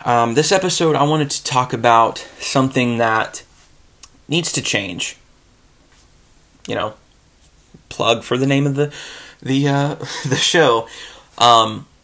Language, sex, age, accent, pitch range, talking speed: English, male, 30-49, American, 115-145 Hz, 130 wpm